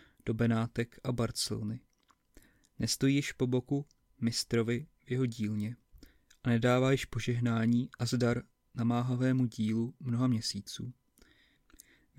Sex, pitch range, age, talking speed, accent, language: male, 115-130 Hz, 30-49, 115 wpm, native, Czech